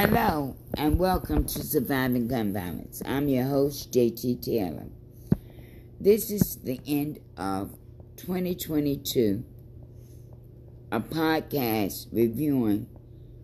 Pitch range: 115-140 Hz